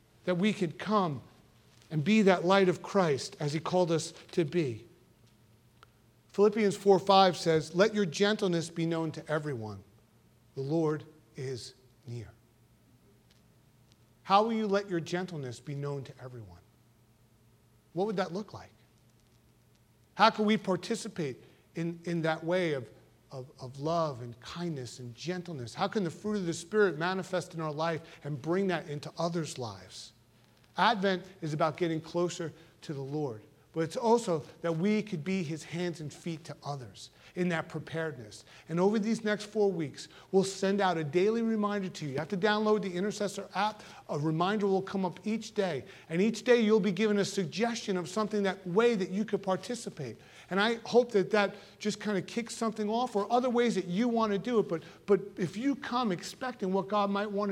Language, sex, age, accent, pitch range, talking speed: English, male, 40-59, American, 140-200 Hz, 185 wpm